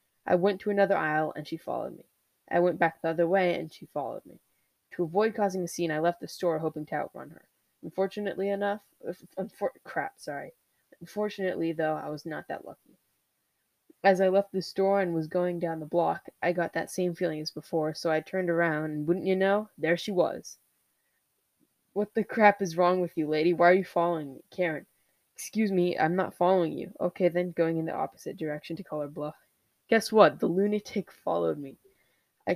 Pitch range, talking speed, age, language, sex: 160-190 Hz, 205 wpm, 10-29, English, female